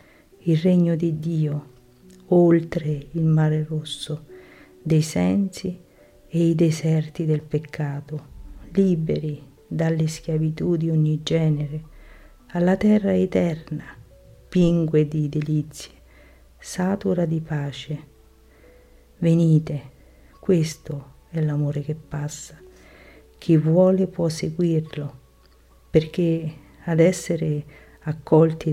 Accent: native